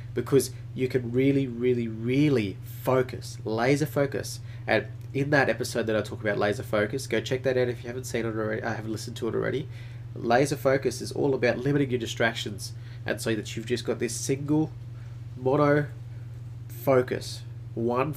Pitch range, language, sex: 115-125 Hz, English, male